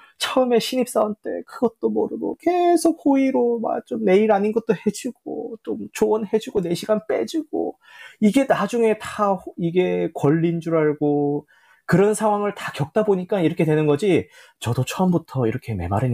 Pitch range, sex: 130-205 Hz, male